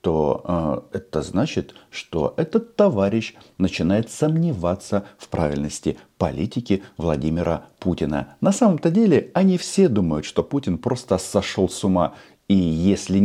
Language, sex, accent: Russian, male, native